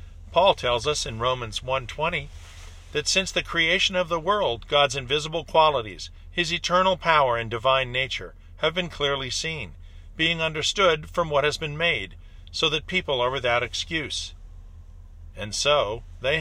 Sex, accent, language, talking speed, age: male, American, English, 155 wpm, 50-69